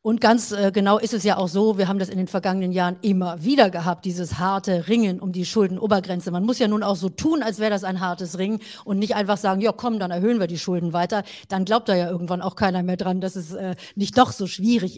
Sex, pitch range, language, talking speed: female, 185-225 Hz, German, 255 wpm